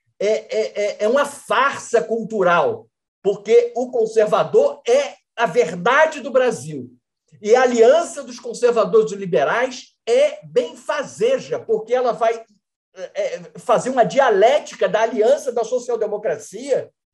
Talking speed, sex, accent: 115 wpm, male, Brazilian